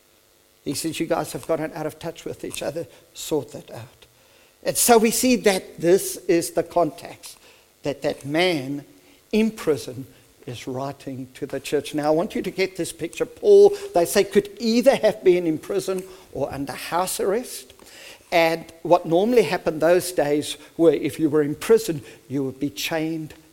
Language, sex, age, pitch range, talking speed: English, male, 50-69, 145-195 Hz, 180 wpm